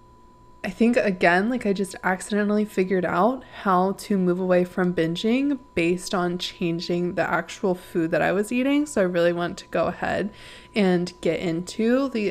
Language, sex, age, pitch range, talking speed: English, female, 20-39, 175-235 Hz, 175 wpm